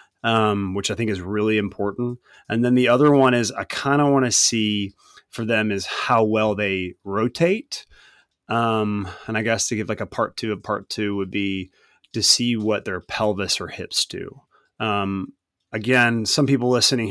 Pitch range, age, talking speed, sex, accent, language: 100-125 Hz, 30-49, 190 wpm, male, American, English